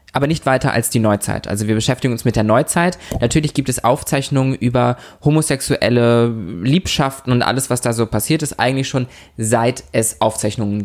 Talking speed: 175 wpm